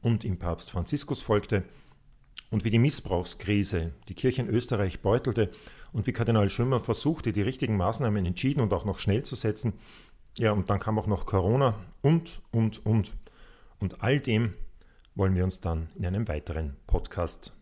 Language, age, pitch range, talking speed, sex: German, 40-59, 90-120 Hz, 170 wpm, male